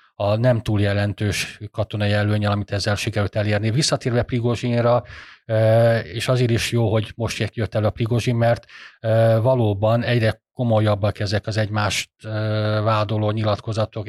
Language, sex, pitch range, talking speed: Hungarian, male, 105-115 Hz, 130 wpm